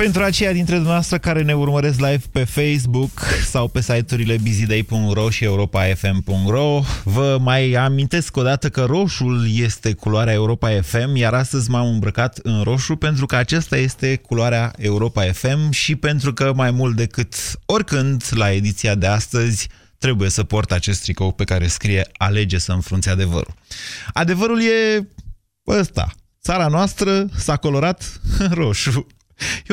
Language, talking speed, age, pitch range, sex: Romanian, 145 wpm, 20-39, 100-135 Hz, male